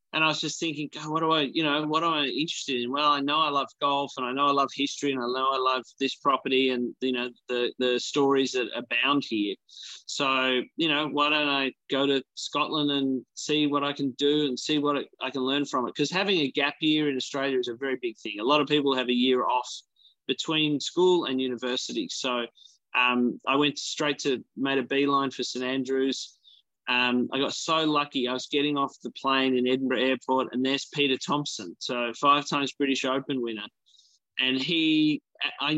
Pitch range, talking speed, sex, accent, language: 130-150 Hz, 220 wpm, male, Australian, English